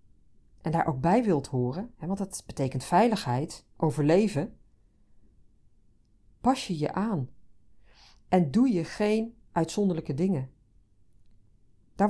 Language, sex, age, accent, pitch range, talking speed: Dutch, female, 40-59, Dutch, 105-165 Hz, 110 wpm